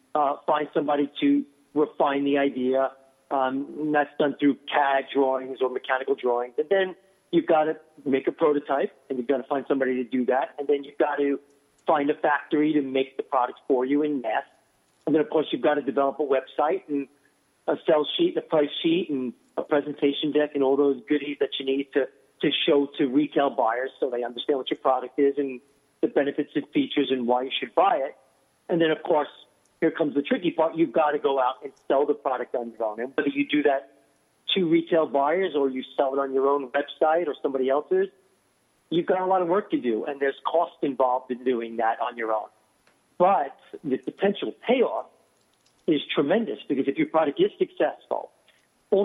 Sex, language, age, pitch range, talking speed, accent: male, English, 50-69, 135-155 Hz, 210 wpm, American